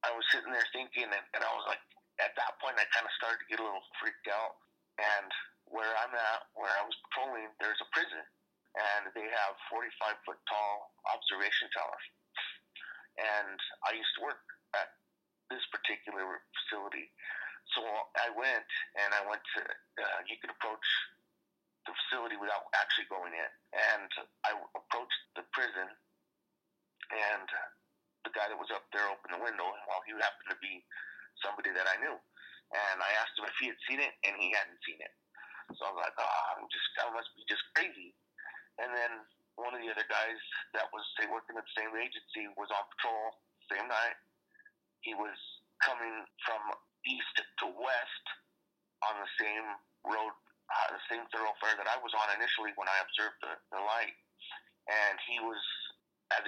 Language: English